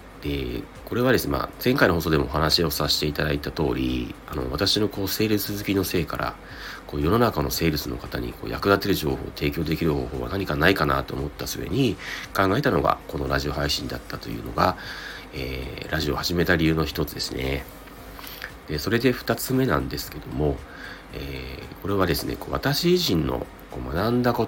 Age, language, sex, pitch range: 40-59, Japanese, male, 70-100 Hz